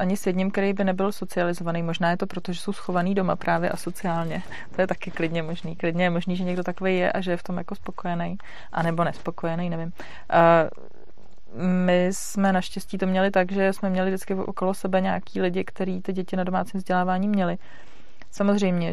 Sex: female